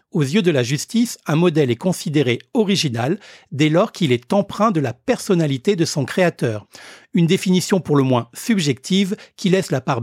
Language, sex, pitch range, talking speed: French, male, 140-185 Hz, 185 wpm